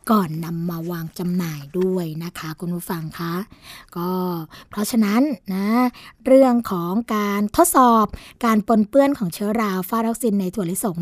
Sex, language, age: female, Thai, 20-39